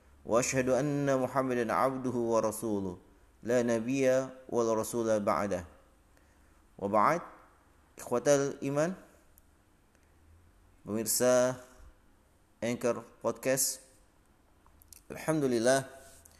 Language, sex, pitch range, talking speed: Indonesian, male, 90-135 Hz, 65 wpm